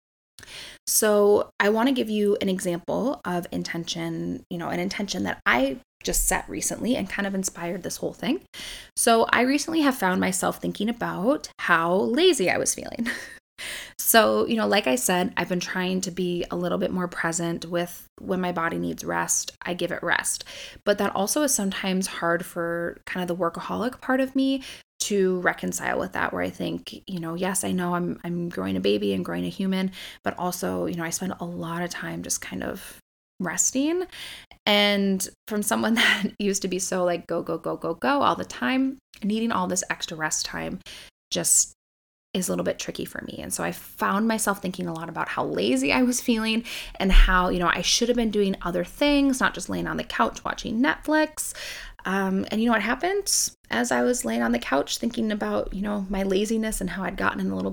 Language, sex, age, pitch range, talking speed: English, female, 20-39, 170-225 Hz, 210 wpm